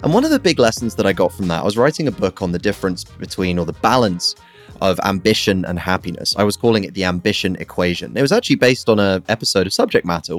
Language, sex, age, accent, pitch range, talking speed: English, male, 30-49, British, 95-135 Hz, 255 wpm